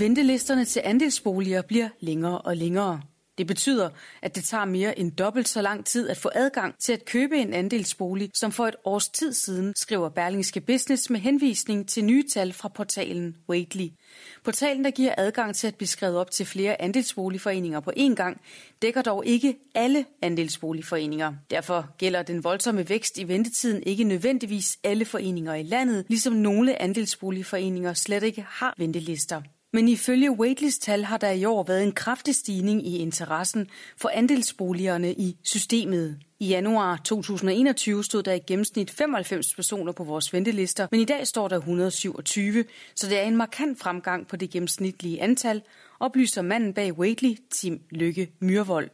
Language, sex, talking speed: Danish, female, 165 wpm